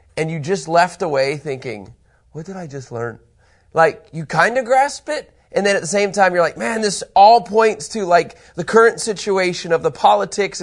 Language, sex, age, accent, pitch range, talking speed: English, male, 30-49, American, 155-215 Hz, 210 wpm